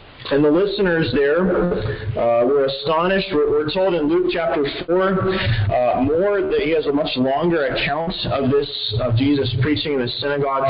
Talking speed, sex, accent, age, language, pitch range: 175 wpm, male, American, 40-59, English, 125-180 Hz